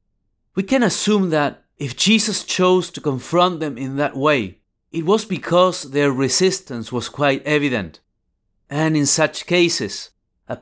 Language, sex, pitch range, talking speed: English, male, 120-170 Hz, 145 wpm